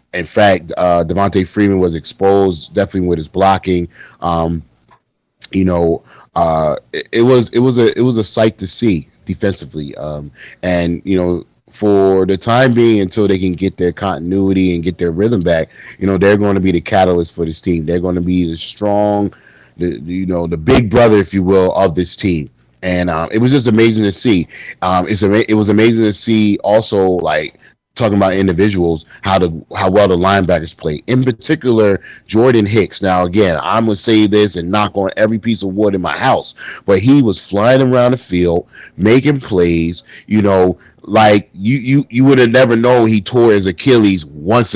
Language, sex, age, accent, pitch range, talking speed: English, male, 30-49, American, 90-110 Hz, 200 wpm